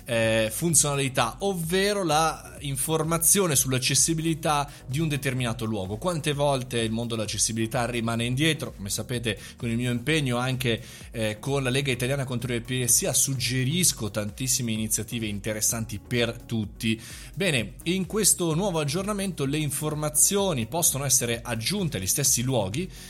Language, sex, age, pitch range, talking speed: Italian, male, 20-39, 110-150 Hz, 130 wpm